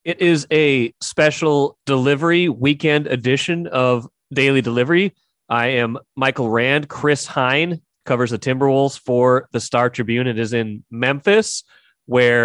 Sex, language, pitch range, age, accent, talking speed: male, English, 120-140 Hz, 30-49, American, 135 wpm